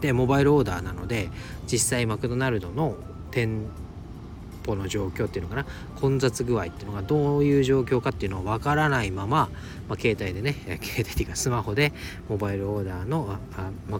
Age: 40-59